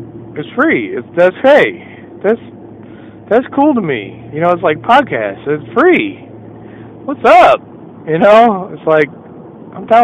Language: English